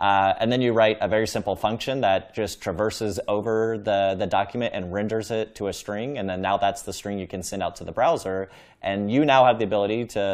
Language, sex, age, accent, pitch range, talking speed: English, male, 30-49, American, 95-115 Hz, 245 wpm